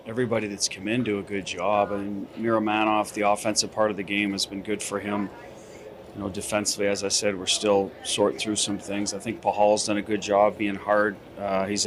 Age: 40-59